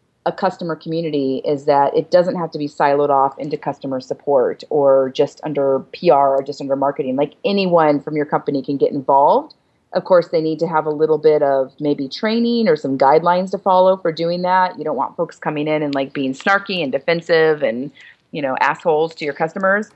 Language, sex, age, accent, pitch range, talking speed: English, female, 30-49, American, 150-180 Hz, 210 wpm